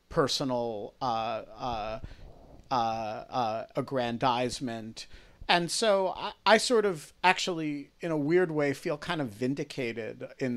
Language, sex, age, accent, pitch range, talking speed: English, male, 50-69, American, 125-150 Hz, 120 wpm